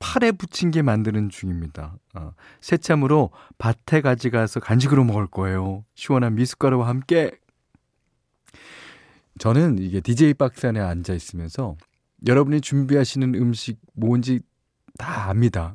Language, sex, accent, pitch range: Korean, male, native, 105-150 Hz